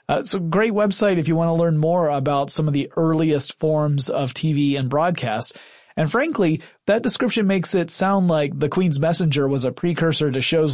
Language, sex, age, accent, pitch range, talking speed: English, male, 30-49, American, 140-165 Hz, 205 wpm